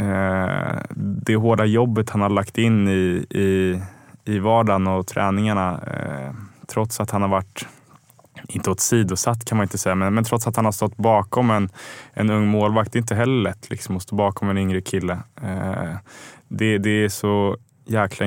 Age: 20-39